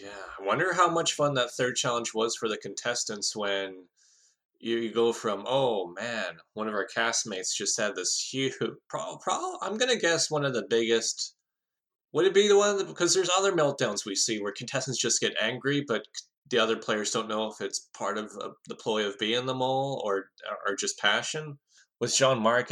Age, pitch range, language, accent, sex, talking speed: 20-39, 100-130 Hz, English, American, male, 200 wpm